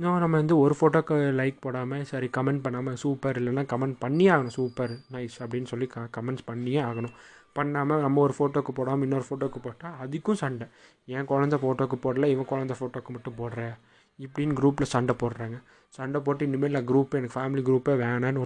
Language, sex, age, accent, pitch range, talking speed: Tamil, male, 20-39, native, 125-155 Hz, 180 wpm